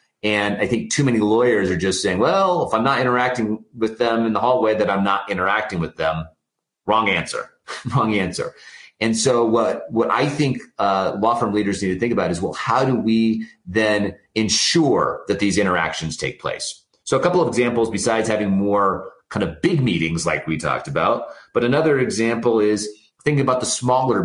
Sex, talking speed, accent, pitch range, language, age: male, 195 wpm, American, 100-120 Hz, English, 30-49